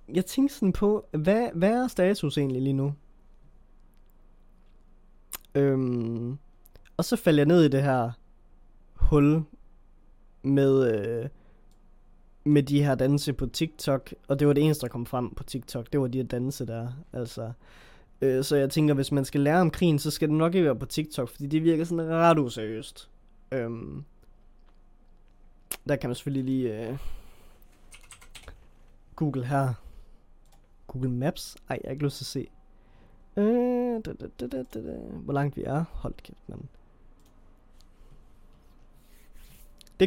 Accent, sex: native, male